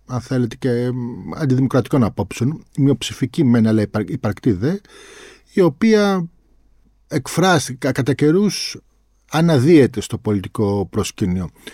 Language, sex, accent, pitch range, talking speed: Greek, male, native, 110-145 Hz, 100 wpm